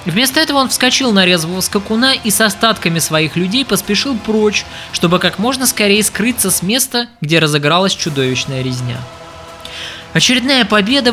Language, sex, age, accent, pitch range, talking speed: Russian, male, 20-39, native, 145-215 Hz, 145 wpm